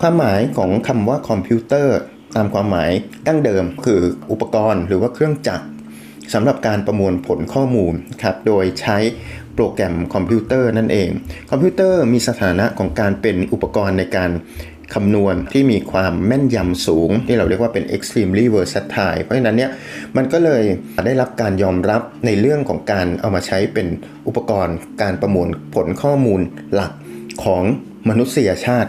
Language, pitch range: Thai, 95-120 Hz